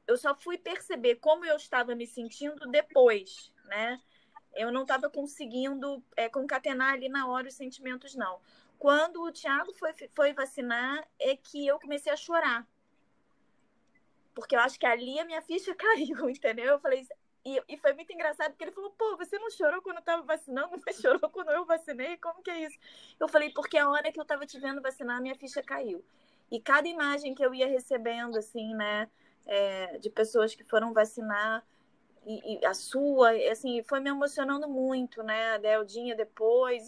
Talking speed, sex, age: 185 wpm, female, 20-39